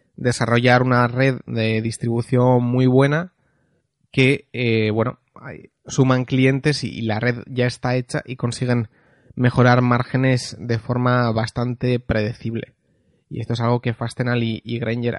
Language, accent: Spanish, Spanish